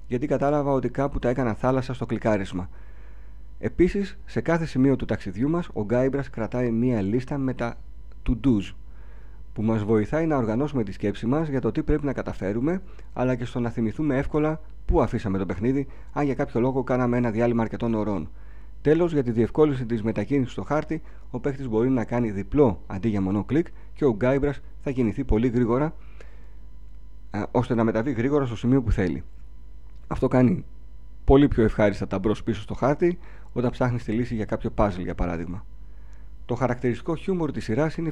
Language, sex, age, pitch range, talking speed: Greek, male, 40-59, 100-140 Hz, 180 wpm